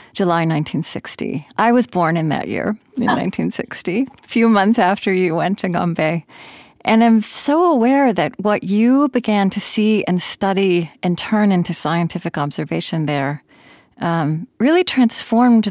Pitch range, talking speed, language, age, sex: 170-215 Hz, 150 wpm, English, 40-59, female